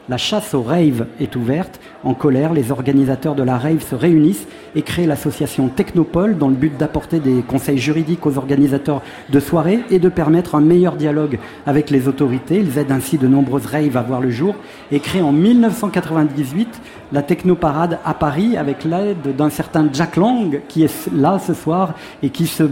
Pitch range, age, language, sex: 135-165 Hz, 40-59, French, male